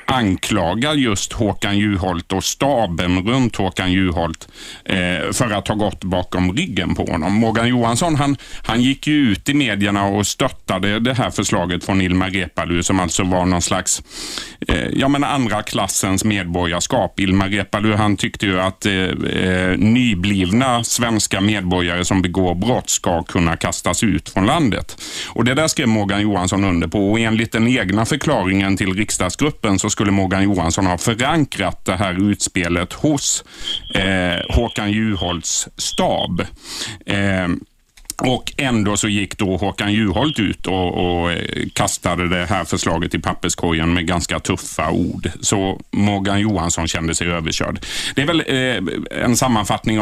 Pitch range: 90-110 Hz